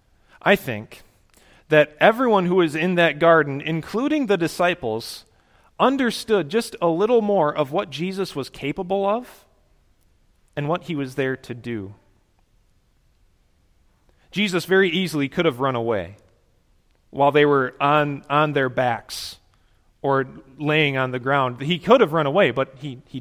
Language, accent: English, American